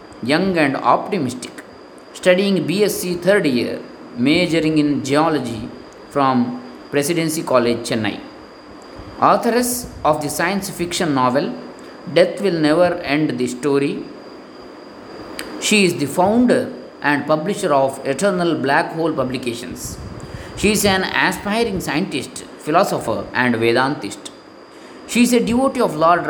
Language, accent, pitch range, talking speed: Kannada, native, 135-180 Hz, 115 wpm